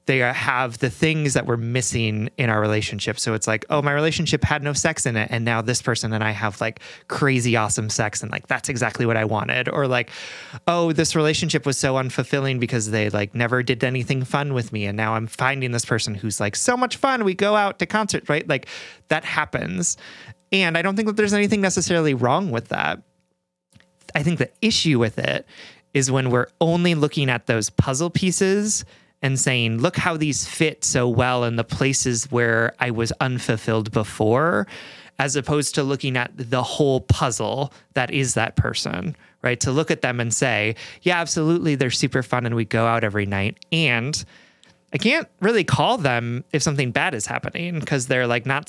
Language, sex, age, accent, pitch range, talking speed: English, male, 30-49, American, 115-155 Hz, 200 wpm